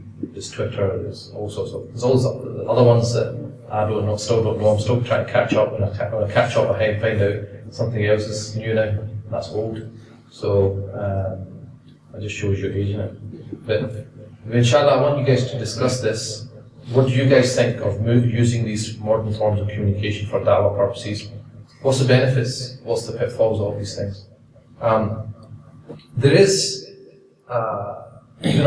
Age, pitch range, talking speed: 30-49, 105-120 Hz, 180 wpm